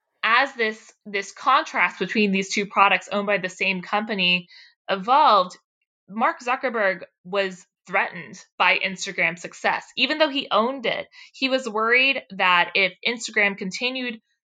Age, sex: 20-39, female